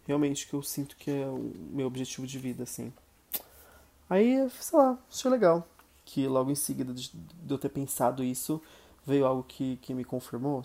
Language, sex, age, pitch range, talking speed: Portuguese, male, 20-39, 125-145 Hz, 180 wpm